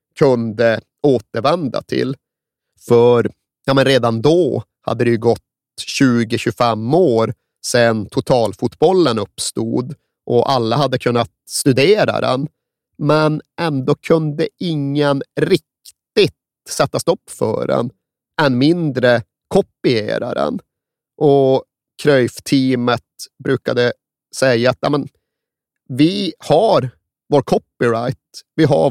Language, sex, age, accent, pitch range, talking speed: Swedish, male, 30-49, native, 115-150 Hz, 100 wpm